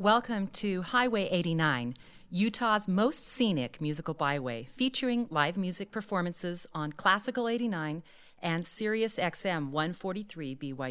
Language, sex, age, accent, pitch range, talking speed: English, female, 40-59, American, 145-205 Hz, 110 wpm